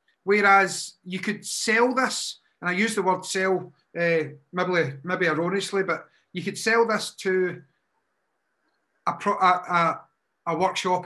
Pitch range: 170-205 Hz